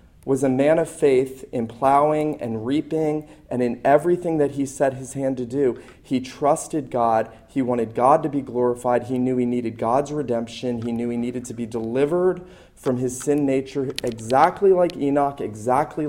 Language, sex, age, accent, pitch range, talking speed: English, male, 40-59, American, 120-150 Hz, 185 wpm